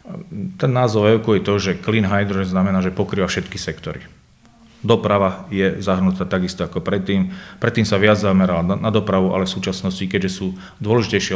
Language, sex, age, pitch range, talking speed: Slovak, male, 30-49, 95-105 Hz, 160 wpm